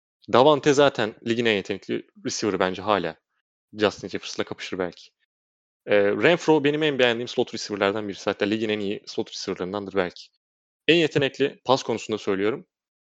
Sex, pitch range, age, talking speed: male, 100-135 Hz, 30-49, 145 wpm